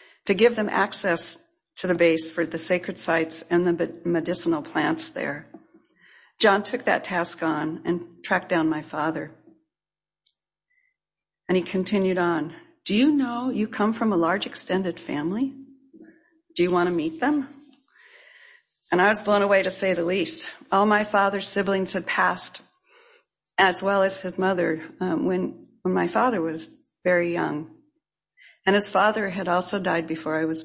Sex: female